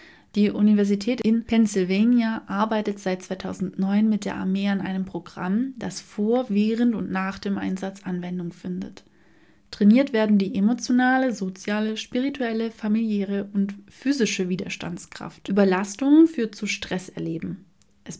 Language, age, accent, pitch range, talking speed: German, 30-49, German, 190-230 Hz, 120 wpm